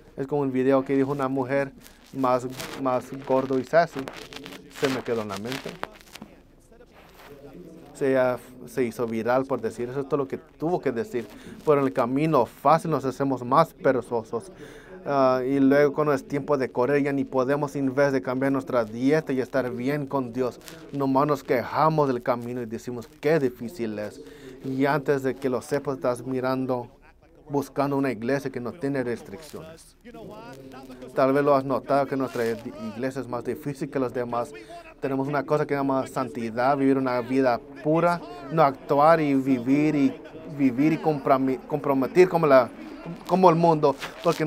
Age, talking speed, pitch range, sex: 30-49, 170 wpm, 130-155 Hz, male